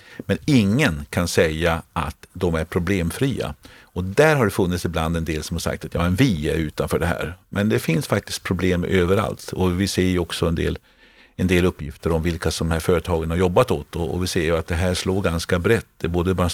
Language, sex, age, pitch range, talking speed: Swedish, male, 50-69, 85-105 Hz, 240 wpm